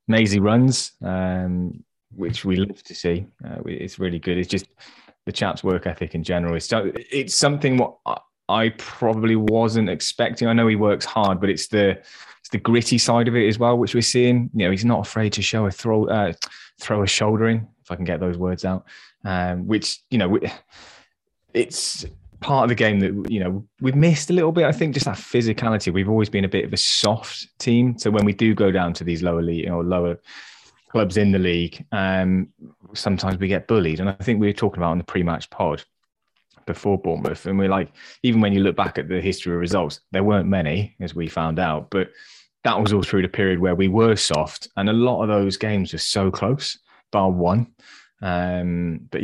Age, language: 20-39, English